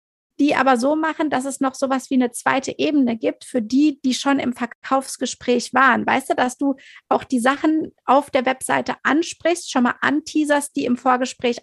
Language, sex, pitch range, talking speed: German, female, 245-295 Hz, 195 wpm